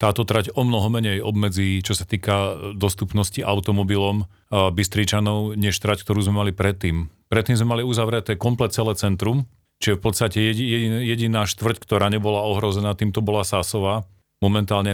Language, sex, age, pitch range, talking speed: Slovak, male, 40-59, 95-105 Hz, 145 wpm